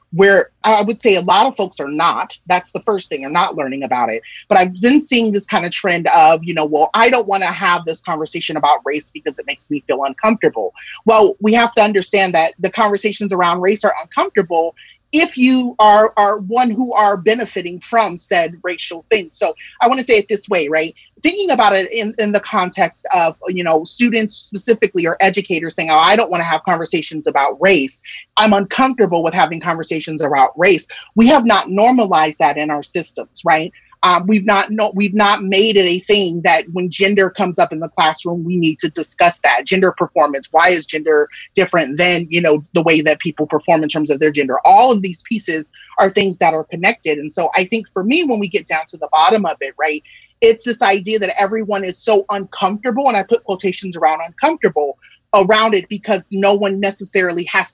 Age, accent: 30-49, American